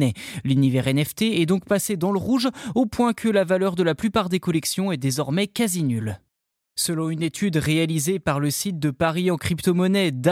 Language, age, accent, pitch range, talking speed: French, 20-39, French, 155-220 Hz, 190 wpm